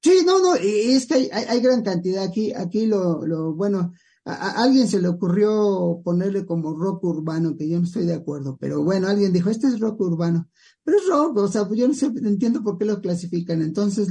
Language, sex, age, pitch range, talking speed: English, male, 50-69, 170-205 Hz, 235 wpm